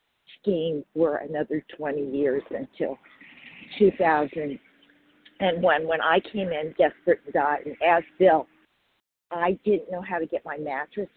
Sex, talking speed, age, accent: female, 140 wpm, 50-69, American